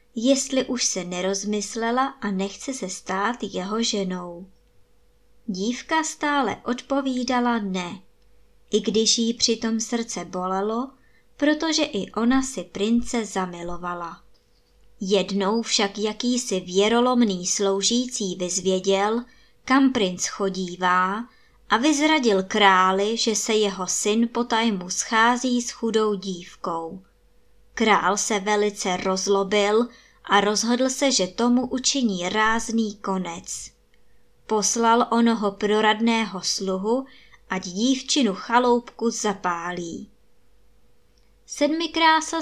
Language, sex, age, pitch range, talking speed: Czech, male, 20-39, 190-245 Hz, 95 wpm